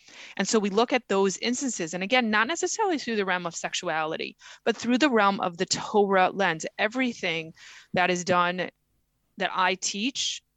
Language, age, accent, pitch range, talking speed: English, 20-39, American, 180-225 Hz, 175 wpm